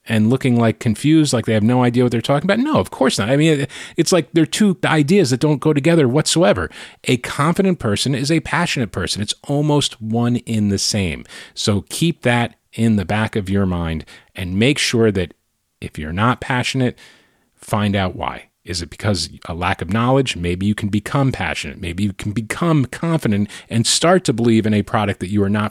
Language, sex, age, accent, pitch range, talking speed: English, male, 30-49, American, 105-140 Hz, 210 wpm